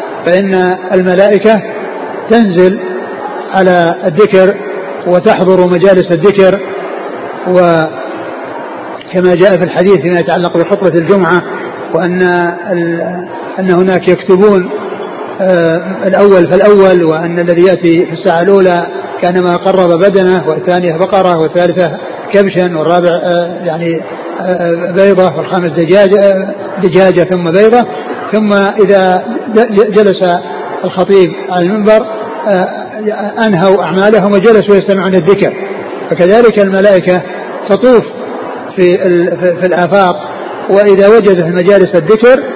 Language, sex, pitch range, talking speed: Arabic, male, 180-200 Hz, 95 wpm